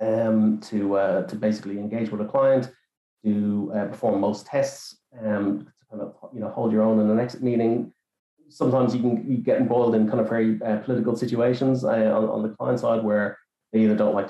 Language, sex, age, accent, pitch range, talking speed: English, male, 30-49, Irish, 105-120 Hz, 215 wpm